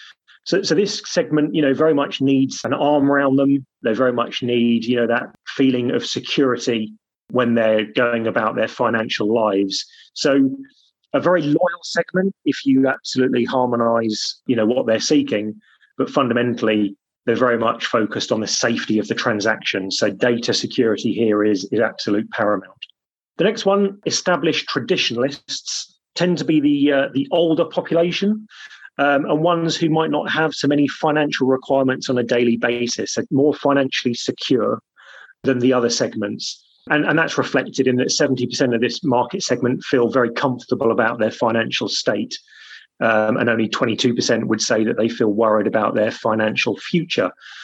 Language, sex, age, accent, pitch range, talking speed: English, male, 30-49, British, 120-155 Hz, 160 wpm